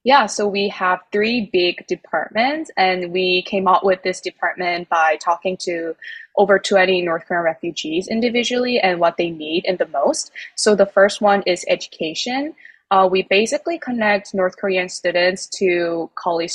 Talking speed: 165 wpm